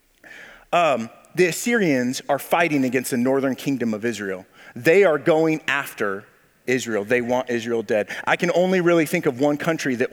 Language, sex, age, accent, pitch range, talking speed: English, male, 40-59, American, 120-150 Hz, 170 wpm